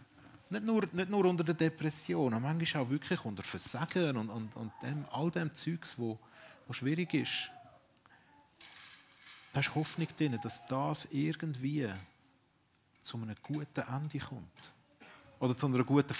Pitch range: 115-150 Hz